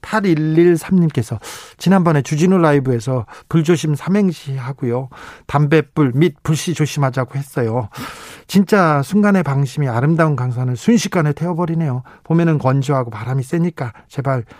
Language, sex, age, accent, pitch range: Korean, male, 40-59, native, 135-180 Hz